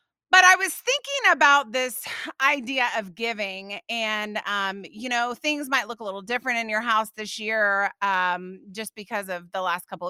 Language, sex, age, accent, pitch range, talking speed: English, female, 30-49, American, 210-285 Hz, 185 wpm